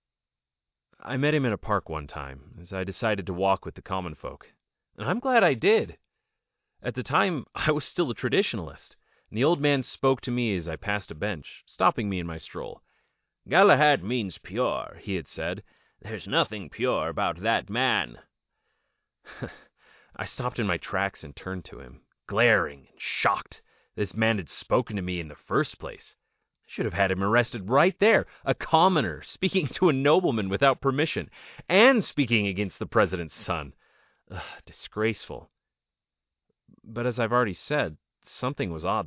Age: 30-49